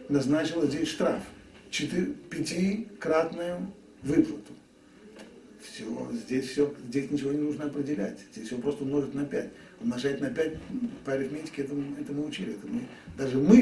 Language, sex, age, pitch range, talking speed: Russian, male, 50-69, 145-240 Hz, 145 wpm